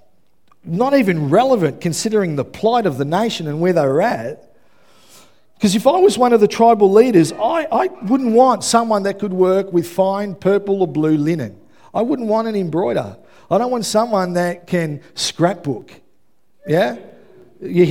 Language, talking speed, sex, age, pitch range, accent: English, 170 wpm, male, 50-69, 165-230 Hz, Australian